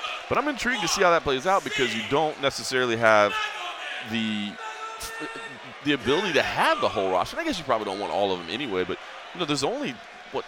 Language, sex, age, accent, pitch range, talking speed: English, male, 30-49, American, 85-110 Hz, 225 wpm